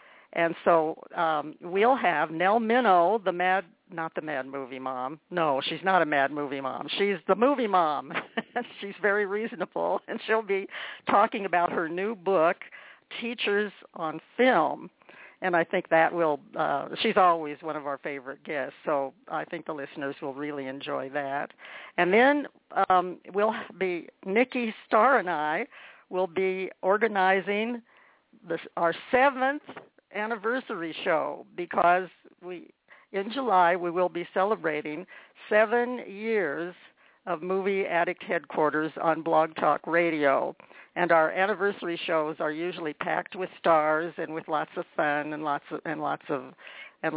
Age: 60-79